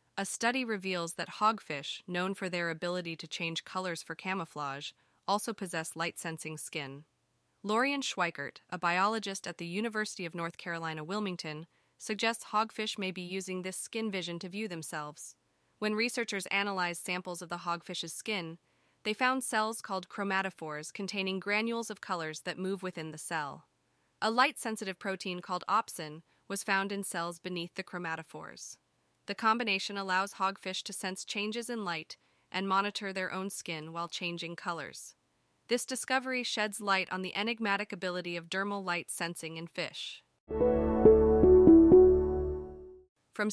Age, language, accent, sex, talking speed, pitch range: 20-39, English, American, female, 145 wpm, 170-210 Hz